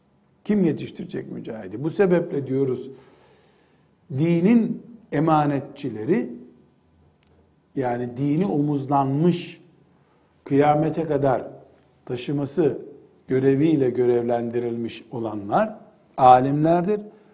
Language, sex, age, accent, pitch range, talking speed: Turkish, male, 60-79, native, 135-190 Hz, 60 wpm